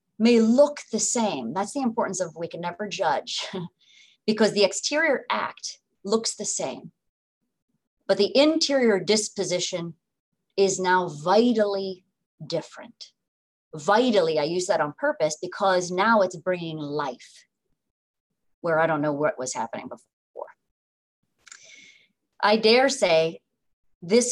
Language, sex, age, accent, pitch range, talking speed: English, female, 30-49, American, 165-215 Hz, 125 wpm